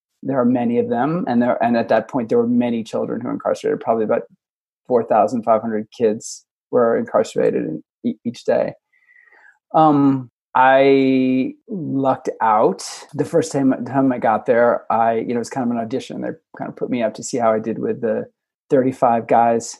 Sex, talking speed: male, 200 wpm